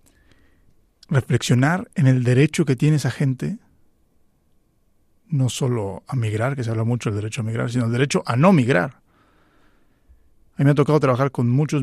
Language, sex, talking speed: Spanish, male, 170 wpm